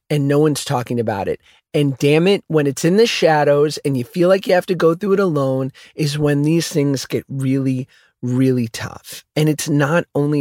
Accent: American